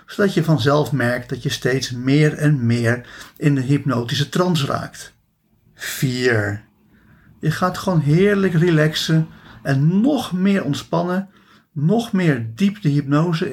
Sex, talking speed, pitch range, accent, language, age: male, 135 wpm, 130-175 Hz, Dutch, Dutch, 50-69